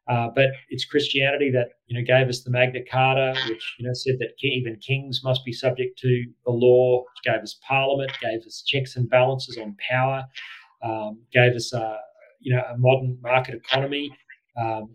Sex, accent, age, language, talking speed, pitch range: male, Australian, 40-59, English, 175 wpm, 125-135 Hz